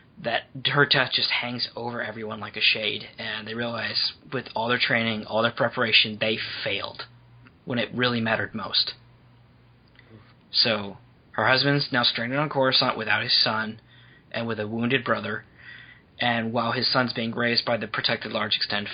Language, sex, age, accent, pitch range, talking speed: English, male, 20-39, American, 115-130 Hz, 165 wpm